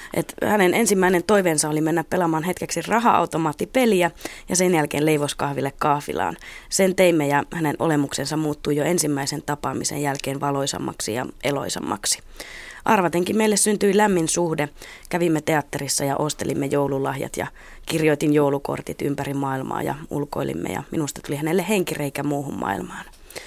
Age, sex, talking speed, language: 20-39, female, 130 wpm, Finnish